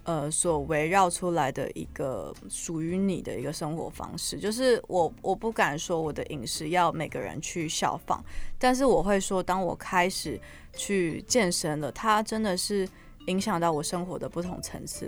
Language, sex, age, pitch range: Chinese, female, 20-39, 165-200 Hz